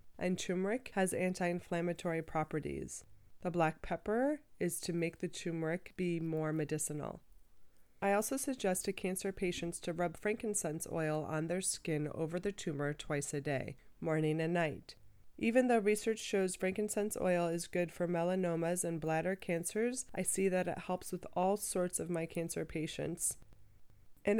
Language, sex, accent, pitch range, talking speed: English, female, American, 160-185 Hz, 155 wpm